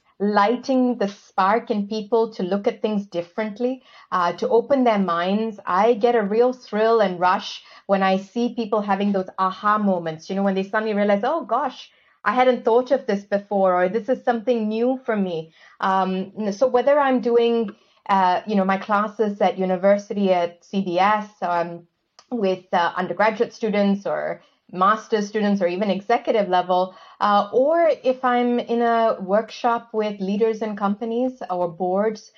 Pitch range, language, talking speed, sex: 190-235 Hz, English, 170 wpm, female